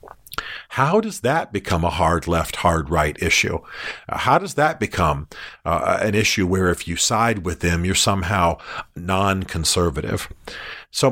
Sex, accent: male, American